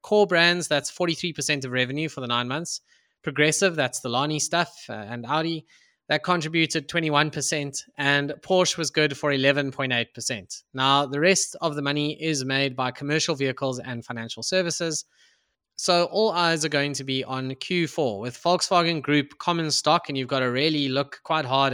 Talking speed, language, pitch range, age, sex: 175 wpm, English, 130-170 Hz, 20-39, male